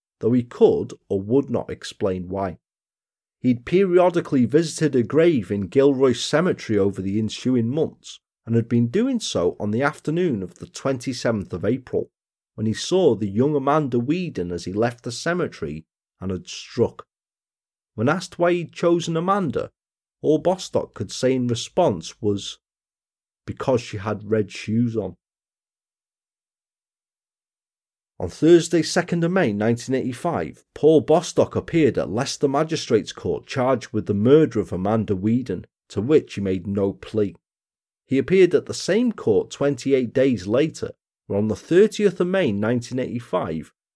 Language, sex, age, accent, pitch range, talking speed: English, male, 40-59, British, 105-155 Hz, 150 wpm